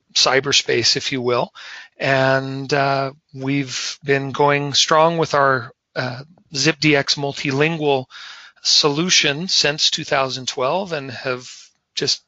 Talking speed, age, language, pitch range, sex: 105 wpm, 40-59, English, 130-150 Hz, male